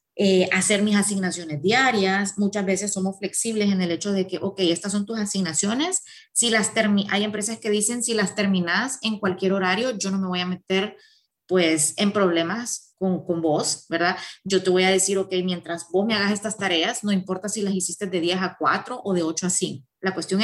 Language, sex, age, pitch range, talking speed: Spanish, female, 30-49, 180-215 Hz, 215 wpm